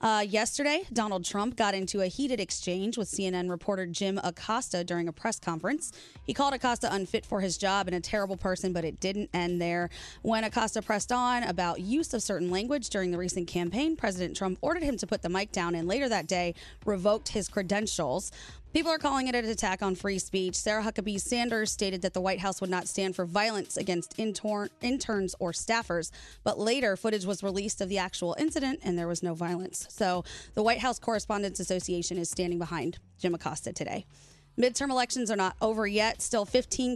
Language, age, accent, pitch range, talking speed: English, 20-39, American, 180-230 Hz, 200 wpm